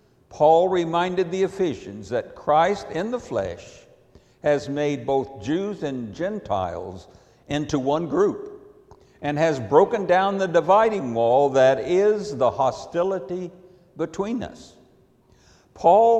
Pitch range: 135-185 Hz